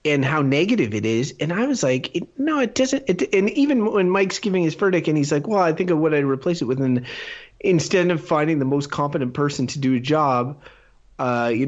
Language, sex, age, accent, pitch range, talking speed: English, male, 30-49, American, 130-170 Hz, 230 wpm